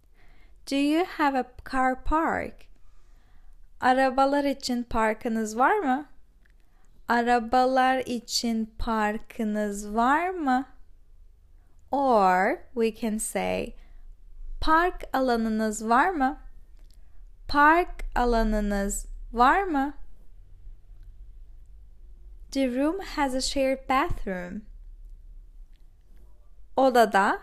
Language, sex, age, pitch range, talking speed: Turkish, female, 10-29, 185-270 Hz, 75 wpm